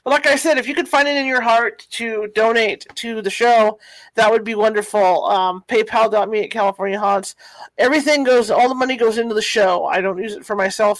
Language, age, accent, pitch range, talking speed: English, 40-59, American, 200-250 Hz, 220 wpm